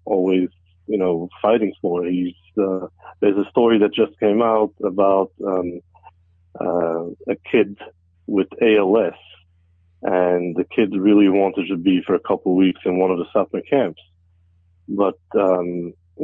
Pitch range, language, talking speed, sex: 90-105 Hz, English, 150 wpm, male